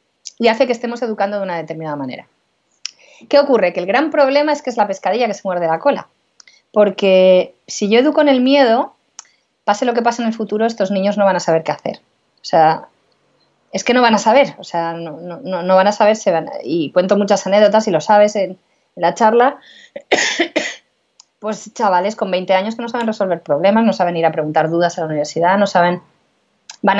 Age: 20-39